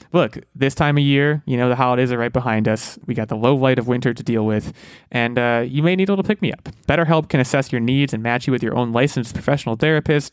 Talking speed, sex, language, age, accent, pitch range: 260 wpm, male, English, 20-39, American, 120-150 Hz